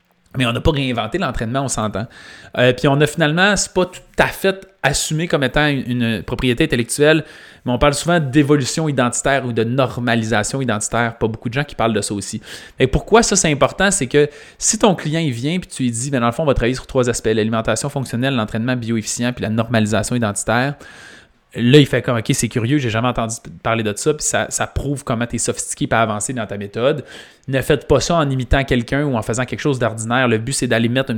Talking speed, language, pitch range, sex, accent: 235 wpm, French, 115-145 Hz, male, Canadian